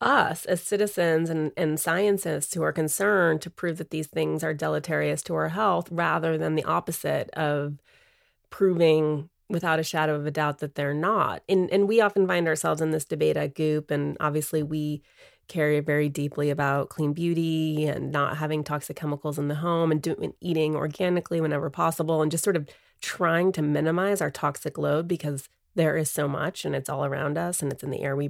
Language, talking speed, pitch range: English, 200 wpm, 150-175 Hz